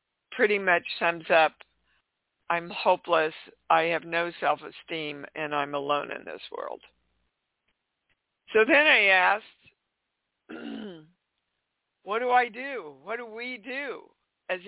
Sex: female